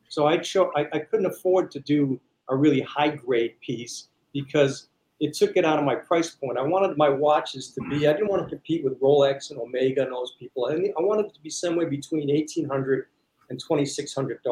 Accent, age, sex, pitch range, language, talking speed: American, 40-59, male, 145-195 Hz, English, 210 wpm